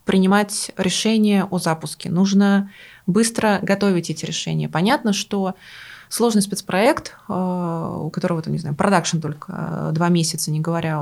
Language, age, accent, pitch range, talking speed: Russian, 20-39, native, 165-200 Hz, 125 wpm